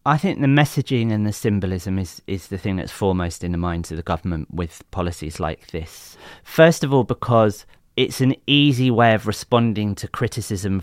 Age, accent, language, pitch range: 30-49, British, English, 90-115 Hz